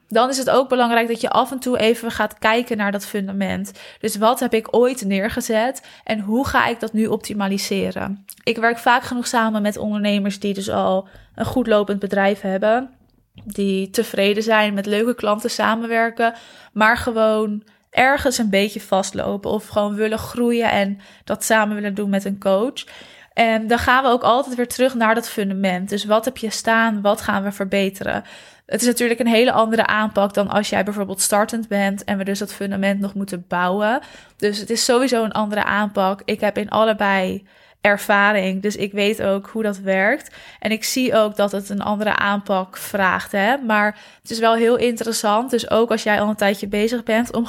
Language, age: Dutch, 20-39